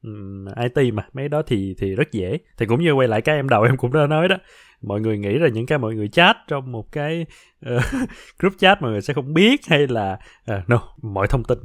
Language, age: Vietnamese, 20-39